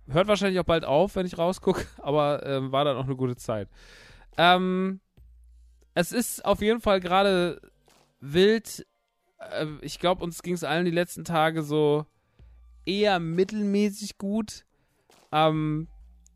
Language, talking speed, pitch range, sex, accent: German, 145 wpm, 130-180 Hz, male, German